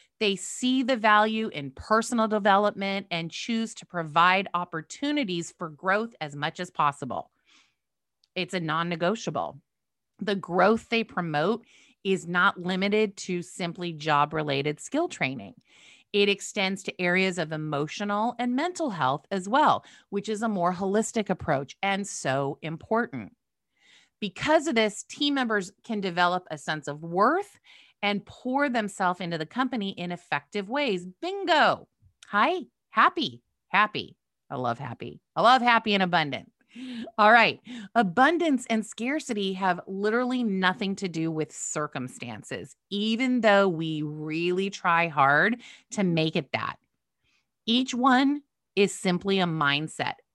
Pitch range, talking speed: 170-230 Hz, 135 wpm